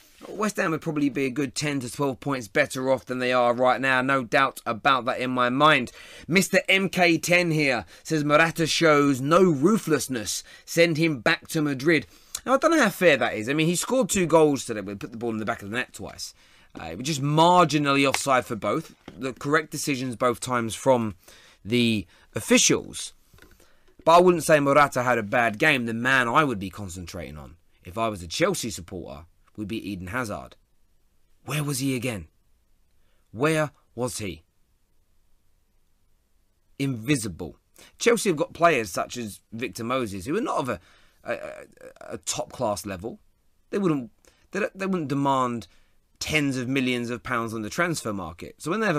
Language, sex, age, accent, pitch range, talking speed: English, male, 30-49, British, 100-150 Hz, 185 wpm